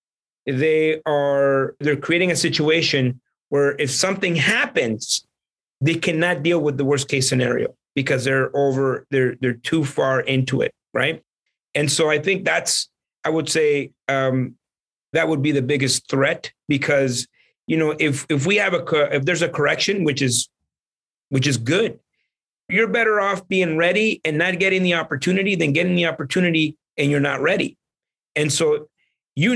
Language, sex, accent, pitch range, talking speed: English, male, American, 135-180 Hz, 165 wpm